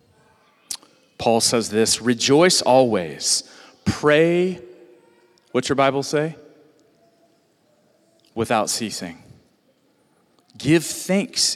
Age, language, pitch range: 40-59, English, 120-175 Hz